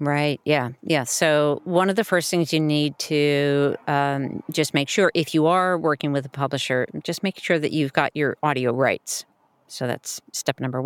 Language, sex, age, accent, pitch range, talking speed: English, female, 40-59, American, 145-185 Hz, 200 wpm